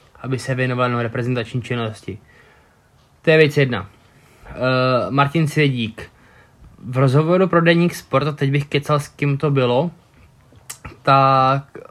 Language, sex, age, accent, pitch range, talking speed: Czech, male, 20-39, native, 130-155 Hz, 130 wpm